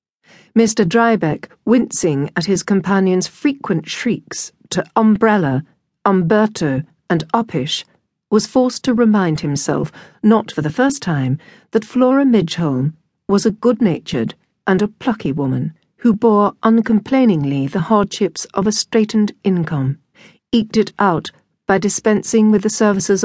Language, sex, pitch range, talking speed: English, female, 170-225 Hz, 130 wpm